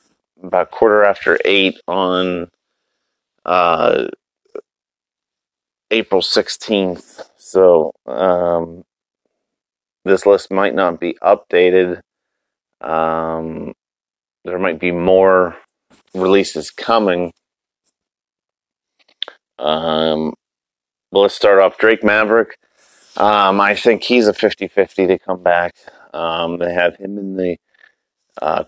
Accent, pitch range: American, 90-100 Hz